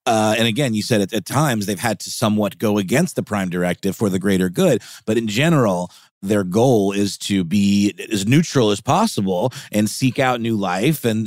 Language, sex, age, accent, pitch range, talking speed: English, male, 30-49, American, 95-120 Hz, 210 wpm